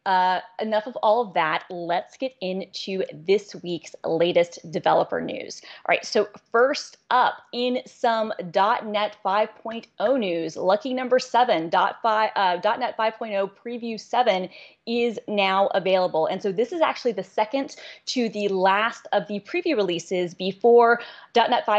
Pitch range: 190-235 Hz